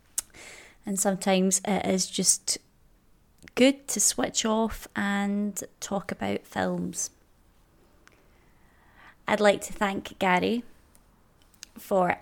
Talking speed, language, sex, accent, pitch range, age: 95 wpm, English, female, British, 180-220 Hz, 20-39